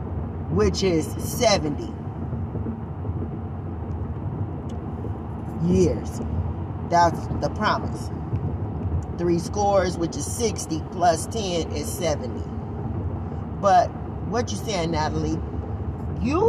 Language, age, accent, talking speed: English, 40-59, American, 80 wpm